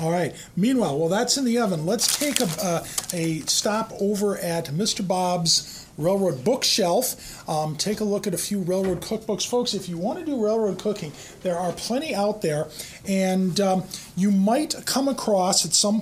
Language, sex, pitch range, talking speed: English, male, 170-225 Hz, 185 wpm